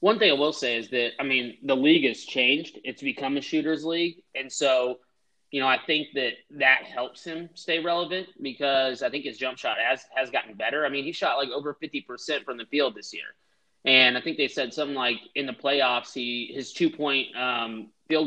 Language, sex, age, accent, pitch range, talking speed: English, male, 20-39, American, 120-150 Hz, 220 wpm